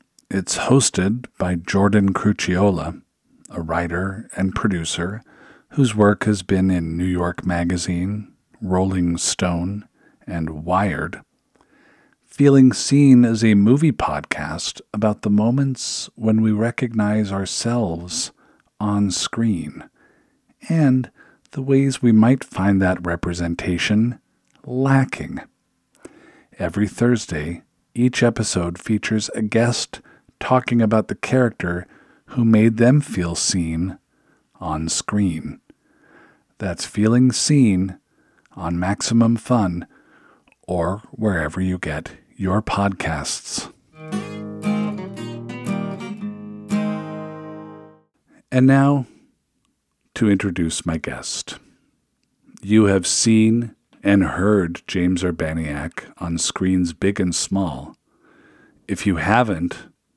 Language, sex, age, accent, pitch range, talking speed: English, male, 50-69, American, 90-120 Hz, 95 wpm